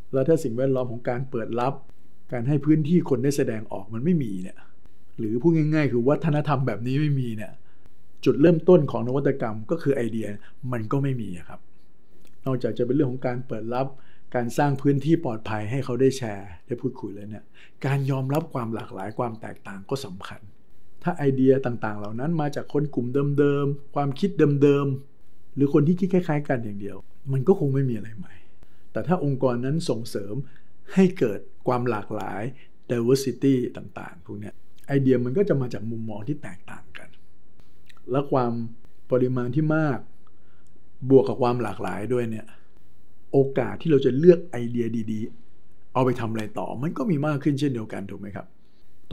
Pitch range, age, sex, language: 100-140 Hz, 60-79, male, Thai